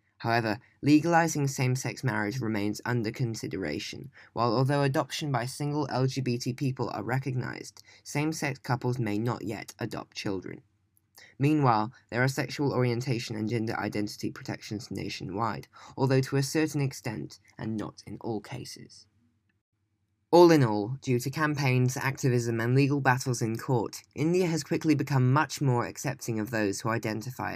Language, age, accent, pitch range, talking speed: English, 10-29, British, 110-140 Hz, 145 wpm